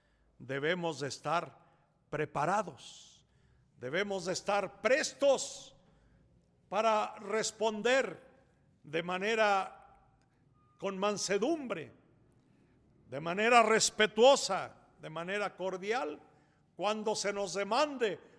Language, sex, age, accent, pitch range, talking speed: Spanish, male, 60-79, Mexican, 150-215 Hz, 80 wpm